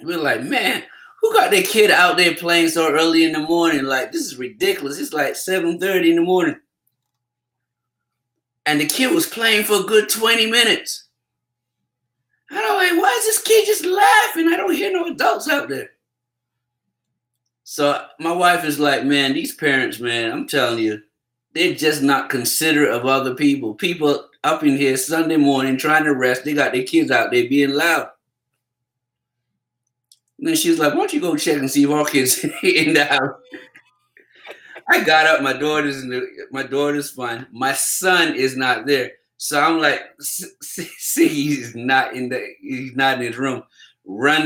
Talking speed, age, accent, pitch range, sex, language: 180 wpm, 30-49, American, 125-180 Hz, male, English